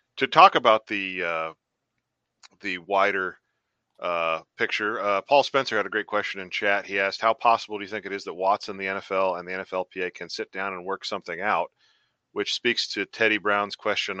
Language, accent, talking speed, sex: English, American, 200 wpm, male